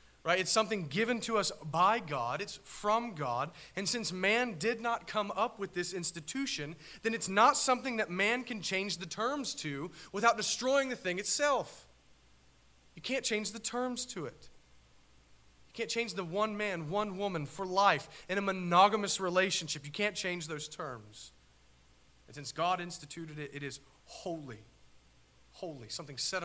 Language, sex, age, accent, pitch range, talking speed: English, male, 30-49, American, 135-195 Hz, 170 wpm